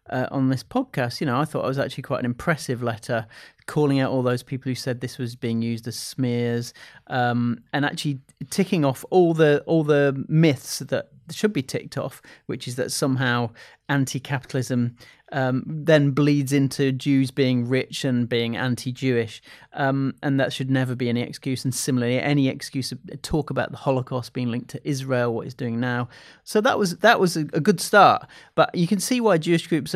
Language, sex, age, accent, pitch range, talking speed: English, male, 30-49, British, 125-155 Hz, 200 wpm